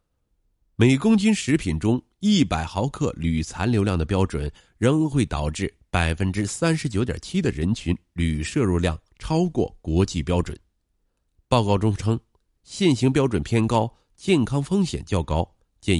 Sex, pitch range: male, 85-125 Hz